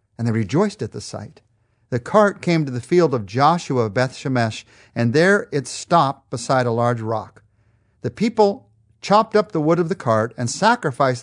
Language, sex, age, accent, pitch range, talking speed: English, male, 50-69, American, 115-155 Hz, 190 wpm